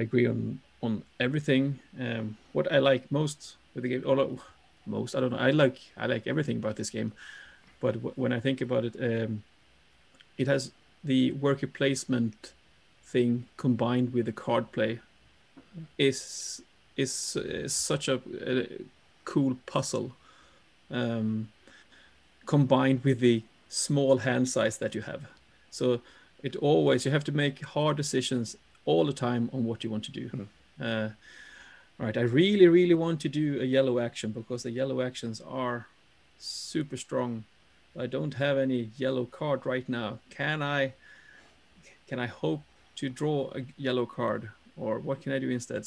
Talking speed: 160 wpm